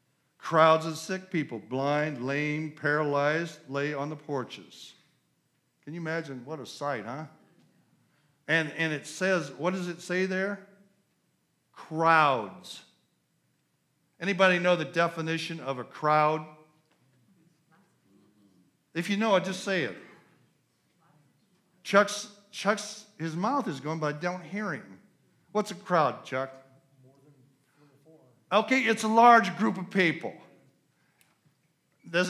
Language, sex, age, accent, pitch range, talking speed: English, male, 50-69, American, 150-195 Hz, 120 wpm